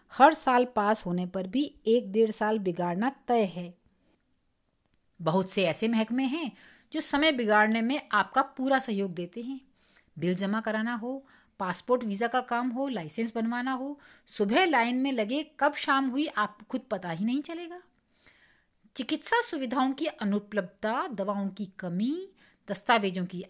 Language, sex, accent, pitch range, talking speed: Hindi, female, native, 200-285 Hz, 155 wpm